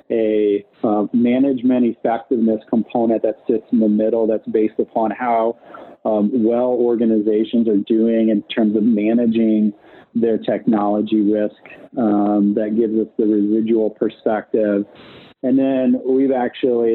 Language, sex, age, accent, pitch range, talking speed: English, male, 40-59, American, 105-120 Hz, 130 wpm